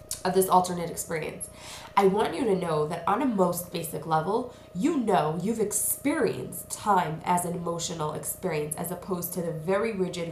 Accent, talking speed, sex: American, 175 wpm, female